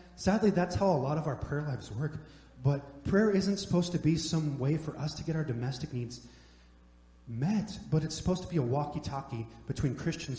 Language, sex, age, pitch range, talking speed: English, male, 30-49, 125-165 Hz, 200 wpm